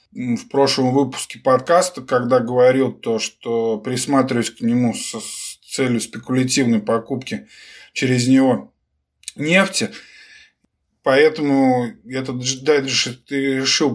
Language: Russian